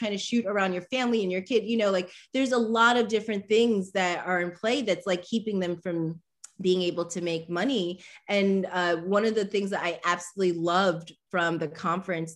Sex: female